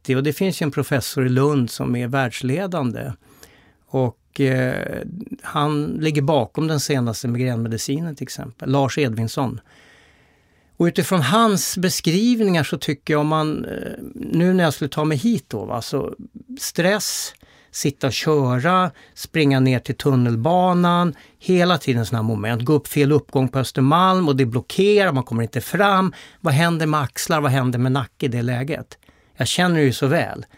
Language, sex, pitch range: Swedish, male, 130-170 Hz